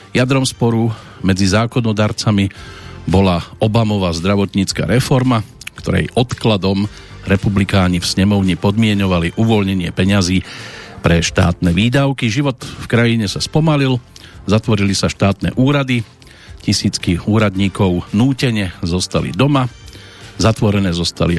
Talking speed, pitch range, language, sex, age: 100 wpm, 95-115 Hz, Slovak, male, 50-69